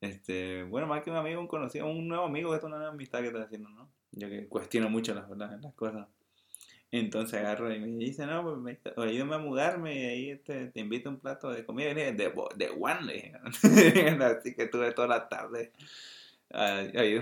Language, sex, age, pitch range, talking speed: English, male, 20-39, 105-145 Hz, 215 wpm